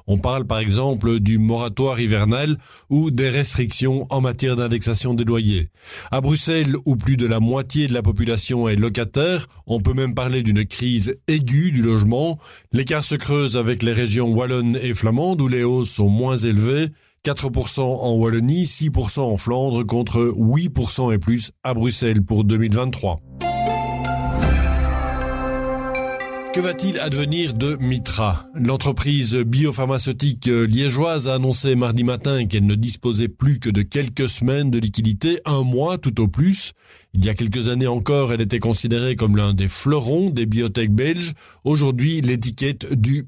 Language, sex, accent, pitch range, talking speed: French, male, French, 115-140 Hz, 155 wpm